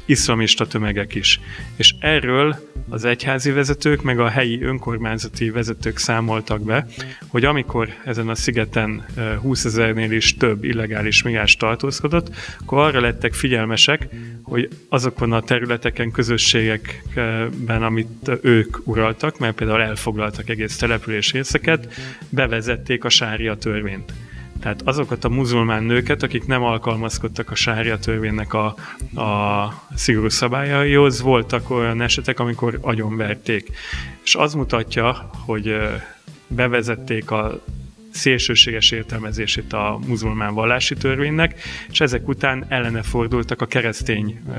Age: 30-49